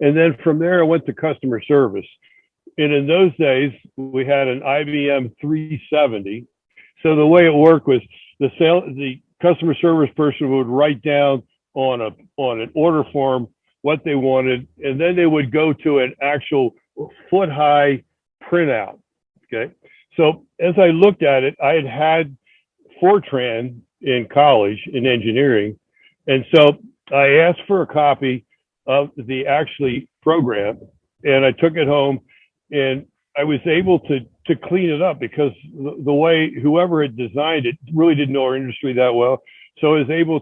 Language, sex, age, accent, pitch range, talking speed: English, male, 60-79, American, 130-155 Hz, 165 wpm